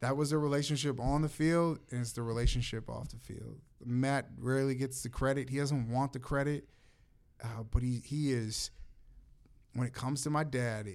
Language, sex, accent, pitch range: English, male, American, 115-140 Hz